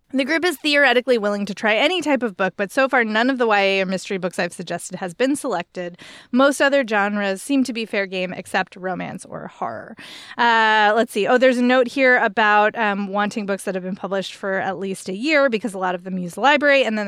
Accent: American